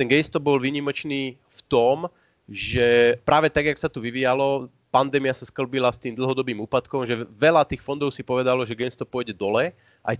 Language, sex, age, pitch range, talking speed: Slovak, male, 30-49, 120-145 Hz, 180 wpm